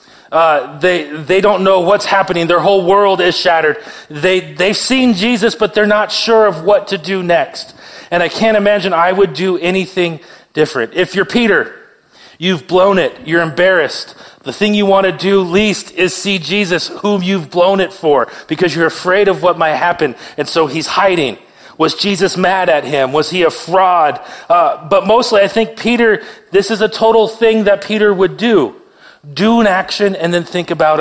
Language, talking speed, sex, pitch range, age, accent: English, 190 wpm, male, 165-200 Hz, 30-49, American